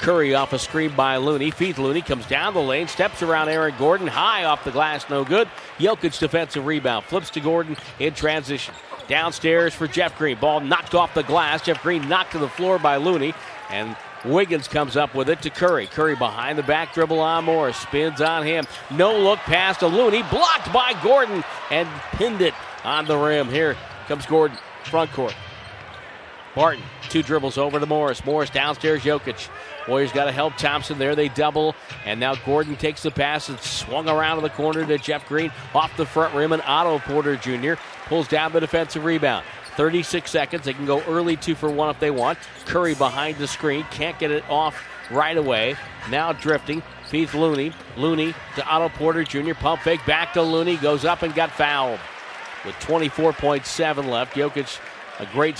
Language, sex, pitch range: English, male, 140-160 Hz